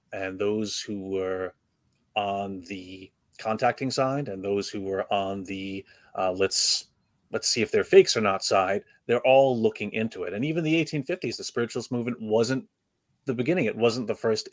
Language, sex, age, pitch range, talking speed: English, male, 30-49, 100-120 Hz, 180 wpm